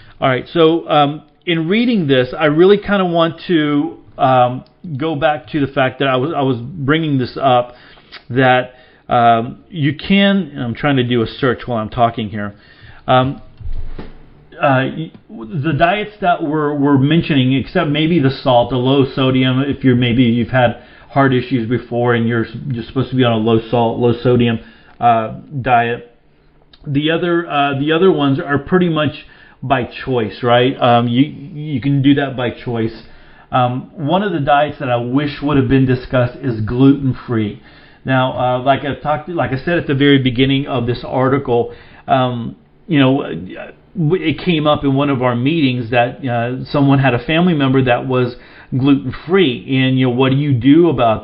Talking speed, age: 185 wpm, 40-59